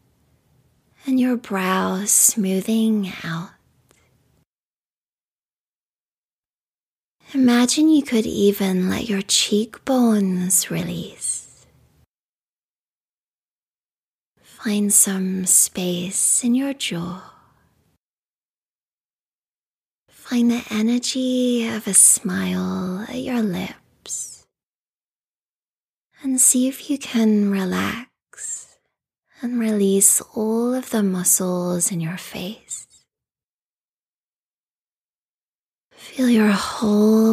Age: 20-39